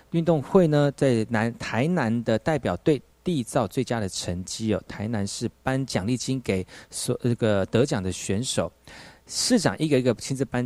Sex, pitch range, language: male, 105-145 Hz, Chinese